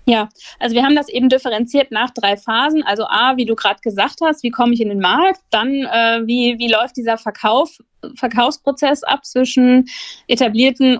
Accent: German